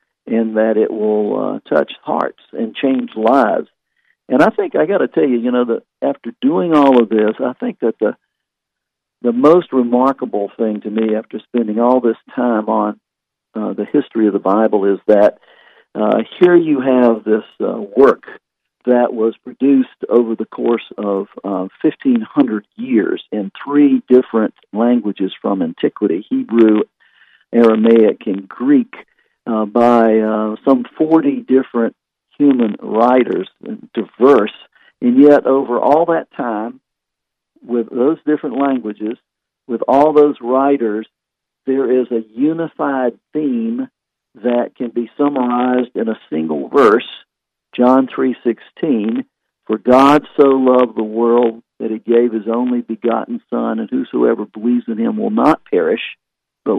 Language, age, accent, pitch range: English, 50-69, American, 110-140 Hz